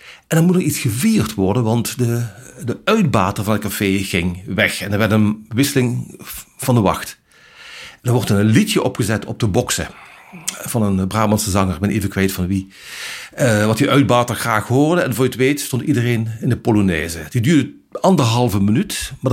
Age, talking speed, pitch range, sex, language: 50-69, 195 wpm, 105-140 Hz, male, Dutch